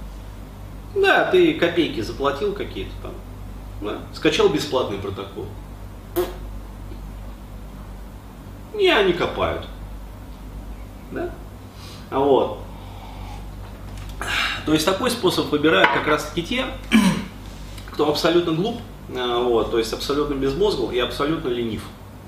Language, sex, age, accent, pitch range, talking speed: Russian, male, 30-49, native, 100-155 Hz, 90 wpm